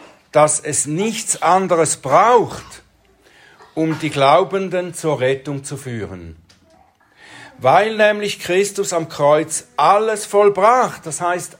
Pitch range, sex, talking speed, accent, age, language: 130-175 Hz, male, 110 wpm, German, 60-79, German